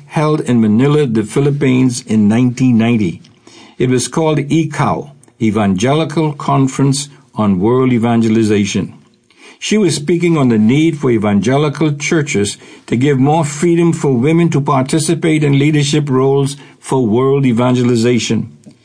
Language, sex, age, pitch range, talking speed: English, male, 60-79, 125-160 Hz, 125 wpm